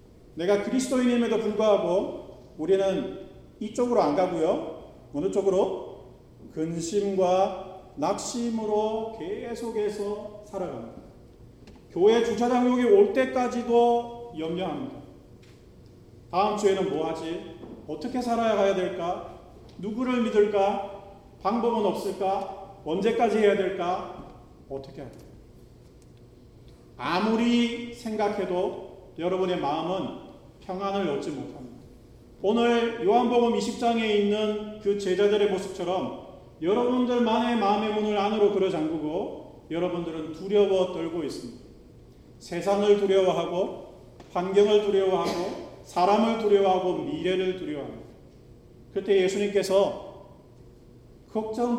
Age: 40-59